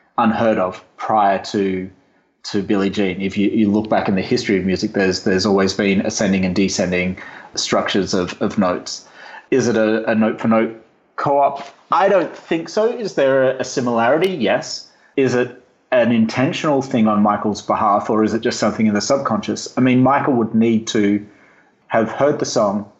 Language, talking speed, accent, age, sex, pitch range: English, 185 wpm, Australian, 30-49, male, 105-125 Hz